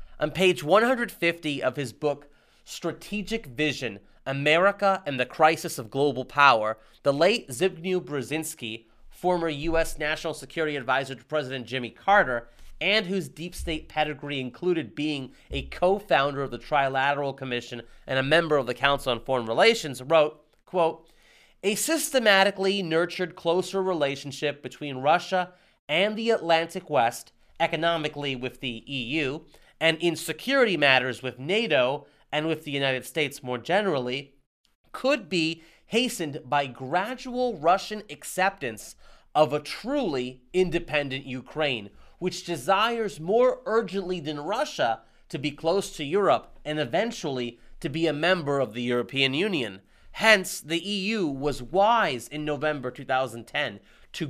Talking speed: 135 wpm